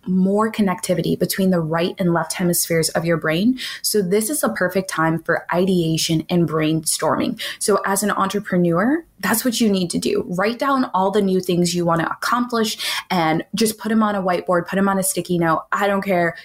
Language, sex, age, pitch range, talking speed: English, female, 20-39, 170-210 Hz, 210 wpm